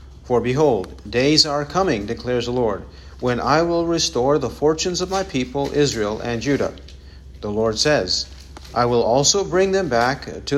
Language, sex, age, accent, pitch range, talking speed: English, male, 50-69, American, 105-145 Hz, 170 wpm